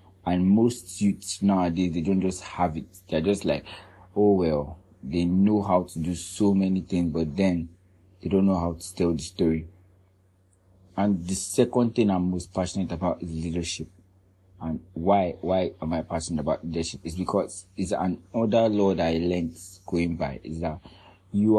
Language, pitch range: English, 90-100 Hz